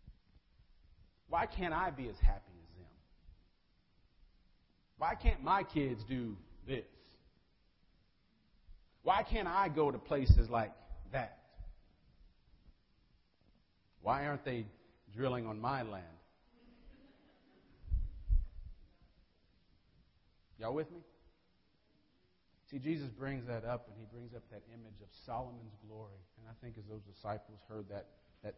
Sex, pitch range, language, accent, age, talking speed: male, 95-135 Hz, English, American, 40-59, 115 wpm